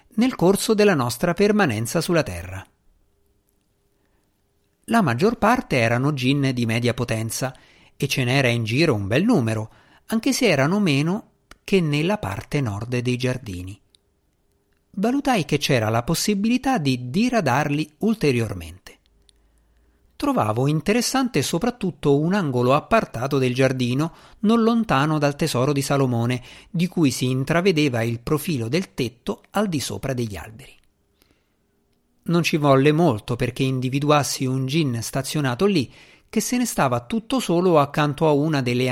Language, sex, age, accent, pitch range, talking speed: Italian, male, 50-69, native, 115-175 Hz, 135 wpm